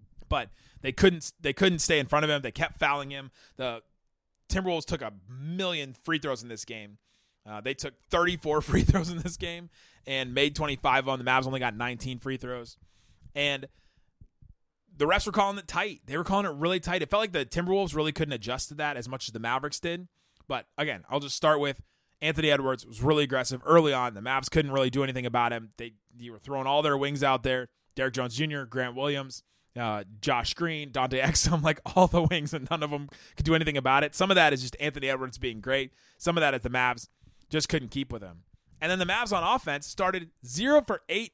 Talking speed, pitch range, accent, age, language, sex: 225 wpm, 125-165 Hz, American, 30-49, English, male